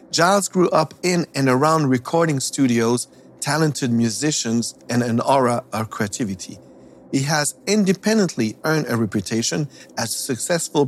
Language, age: English, 50-69